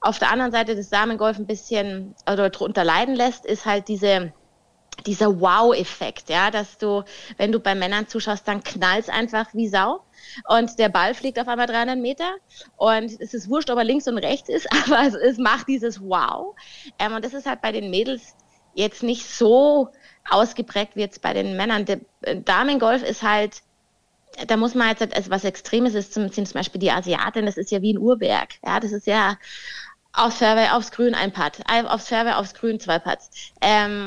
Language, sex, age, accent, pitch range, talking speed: German, female, 20-39, German, 205-240 Hz, 200 wpm